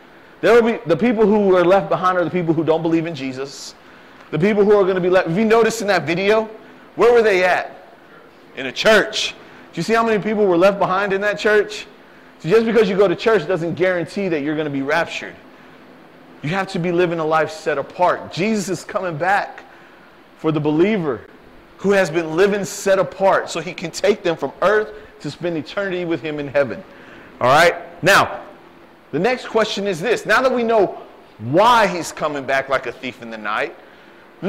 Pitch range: 165-220 Hz